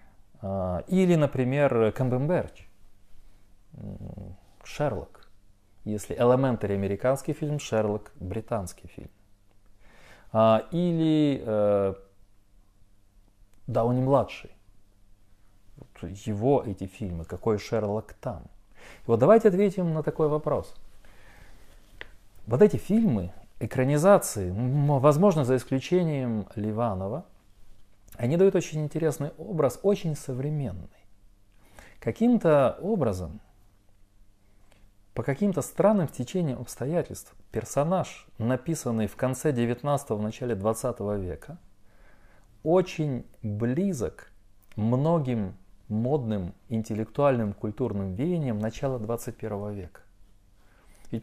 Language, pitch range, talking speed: Russian, 100-140 Hz, 80 wpm